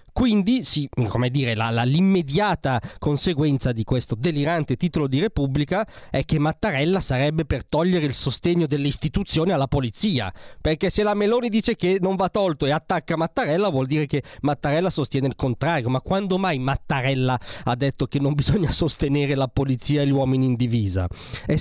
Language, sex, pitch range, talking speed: Italian, male, 130-170 Hz, 175 wpm